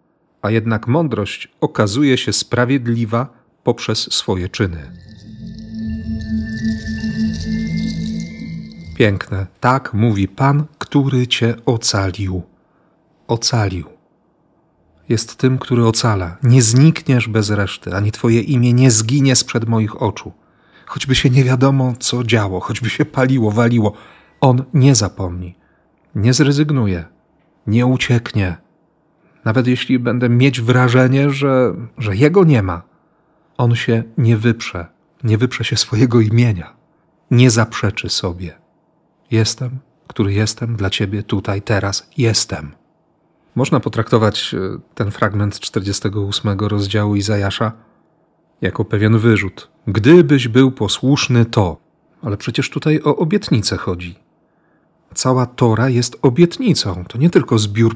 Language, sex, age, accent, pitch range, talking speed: Polish, male, 40-59, native, 105-135 Hz, 115 wpm